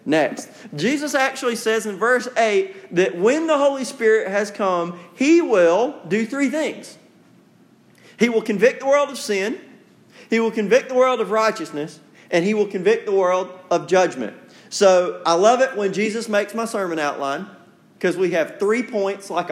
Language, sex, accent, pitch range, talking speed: English, male, American, 190-245 Hz, 175 wpm